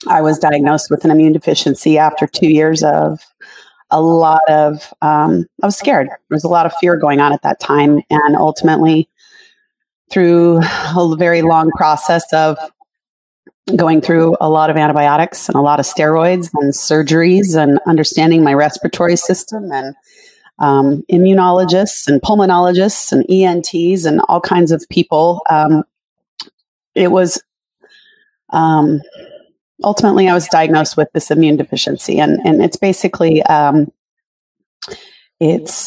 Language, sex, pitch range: English, female, 150-175 Hz